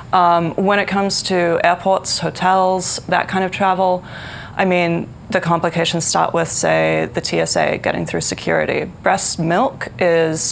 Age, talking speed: 20-39, 150 wpm